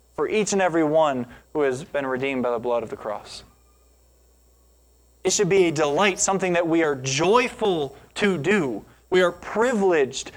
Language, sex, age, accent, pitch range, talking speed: English, male, 20-39, American, 135-185 Hz, 175 wpm